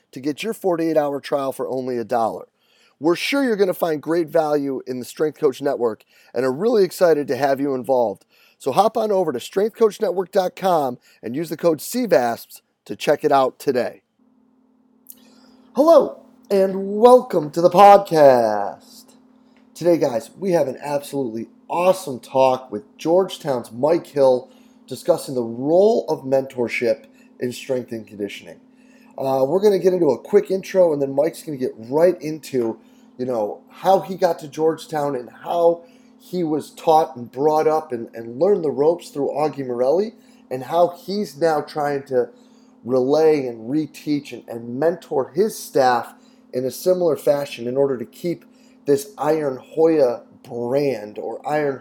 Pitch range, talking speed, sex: 135-210 Hz, 160 wpm, male